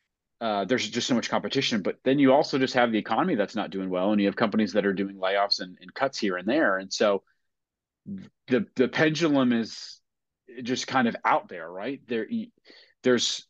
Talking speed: 200 wpm